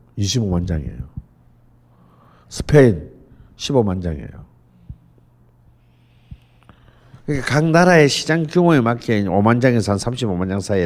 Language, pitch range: Korean, 85-125 Hz